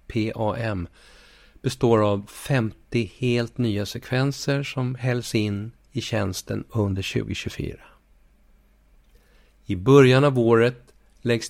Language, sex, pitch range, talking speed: Swedish, male, 105-125 Hz, 100 wpm